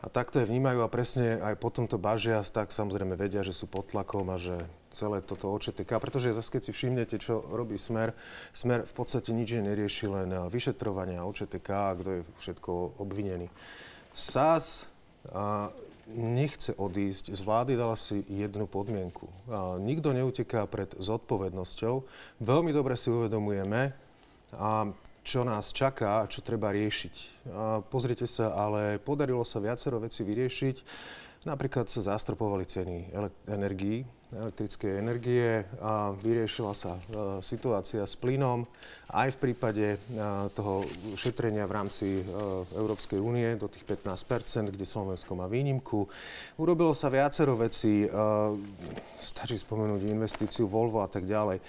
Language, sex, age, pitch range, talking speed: Slovak, male, 30-49, 100-120 Hz, 135 wpm